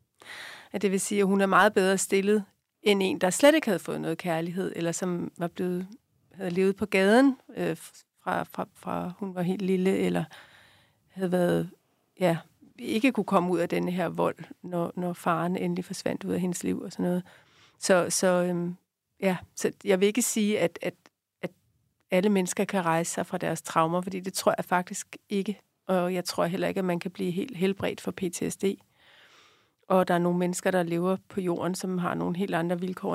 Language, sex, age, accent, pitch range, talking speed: Danish, female, 40-59, native, 175-195 Hz, 205 wpm